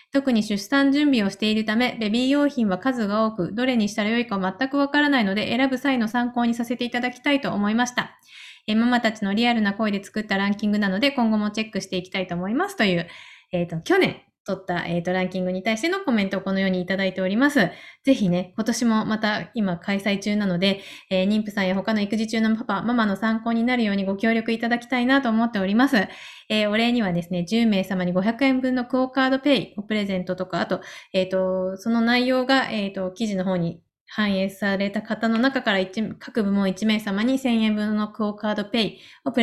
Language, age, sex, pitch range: Japanese, 20-39, female, 185-235 Hz